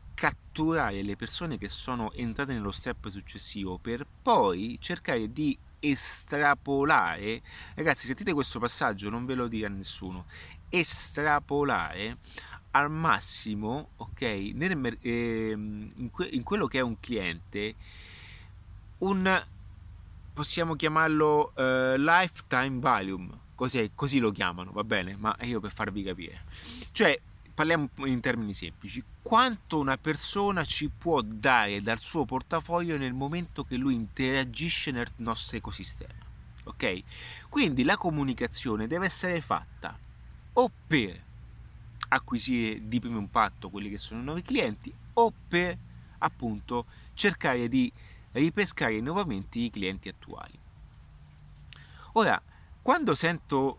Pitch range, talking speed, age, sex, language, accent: 100-150 Hz, 115 wpm, 30-49, male, Italian, native